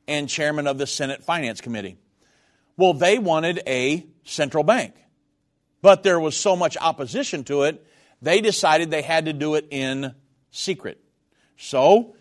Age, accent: 50-69, American